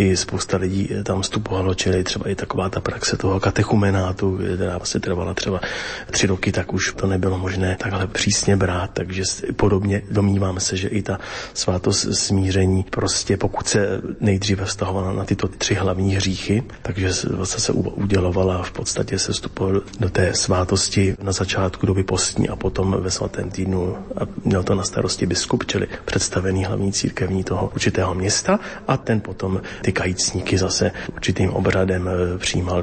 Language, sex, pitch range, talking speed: Slovak, male, 95-105 Hz, 160 wpm